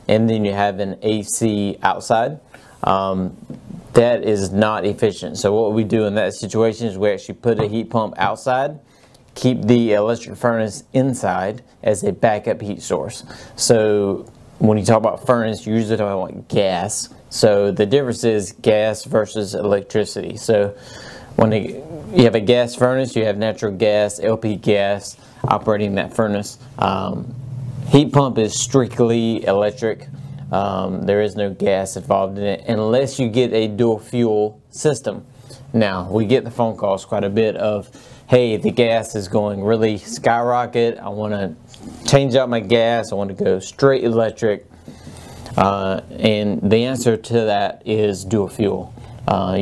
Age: 30-49